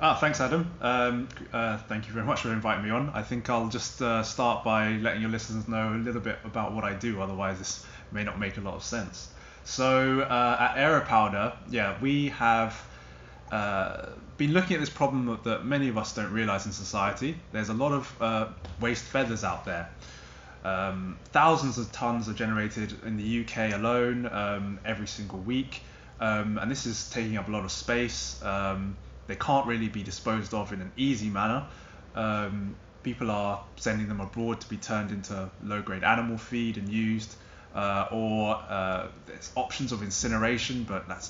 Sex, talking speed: male, 185 wpm